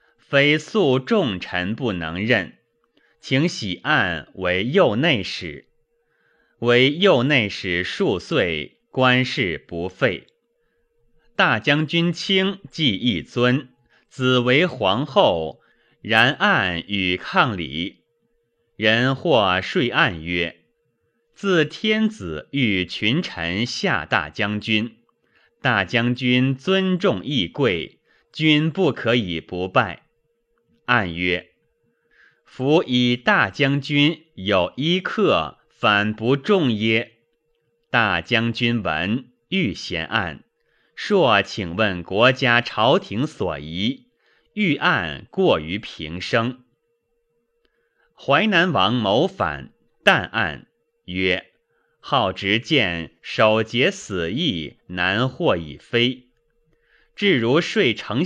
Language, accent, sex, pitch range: Chinese, native, male, 105-155 Hz